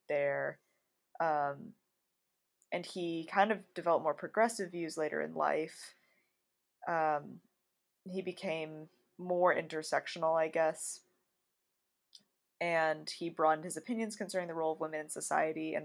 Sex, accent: female, American